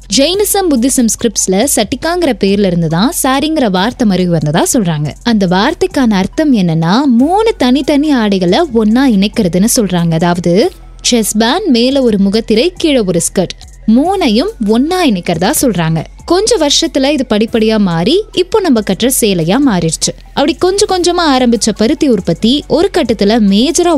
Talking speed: 130 wpm